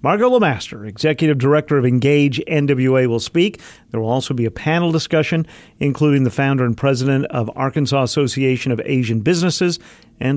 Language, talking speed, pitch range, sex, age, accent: English, 160 wpm, 120-160 Hz, male, 50-69, American